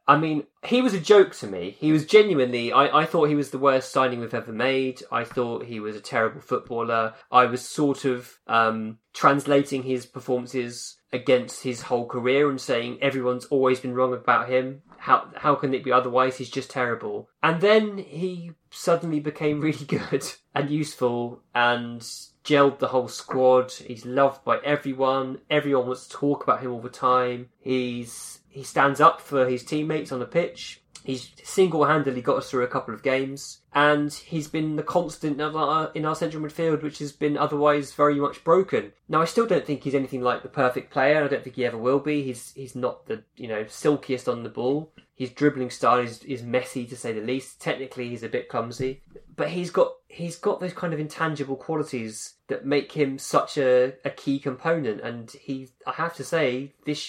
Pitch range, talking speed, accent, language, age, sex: 125-150 Hz, 200 wpm, British, English, 20-39, male